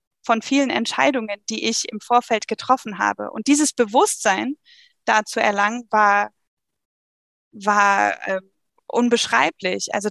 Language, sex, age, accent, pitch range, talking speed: German, female, 20-39, German, 205-250 Hz, 120 wpm